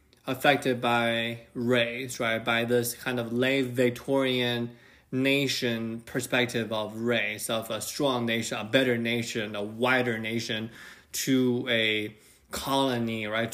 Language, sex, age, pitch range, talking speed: English, male, 20-39, 115-135 Hz, 125 wpm